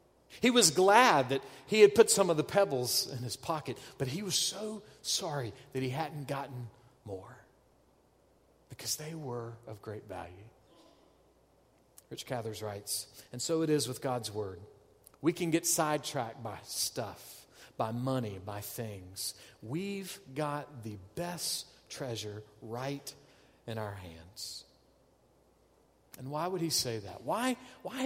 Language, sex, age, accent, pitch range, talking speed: English, male, 40-59, American, 120-170 Hz, 145 wpm